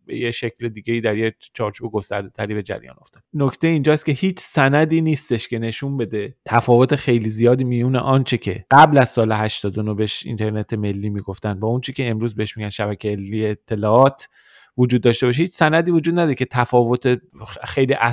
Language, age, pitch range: Persian, 30-49, 110-135 Hz